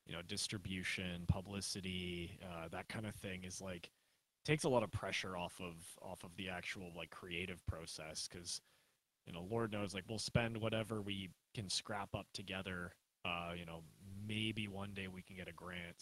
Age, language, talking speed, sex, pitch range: 20-39, English, 185 wpm, male, 95-115 Hz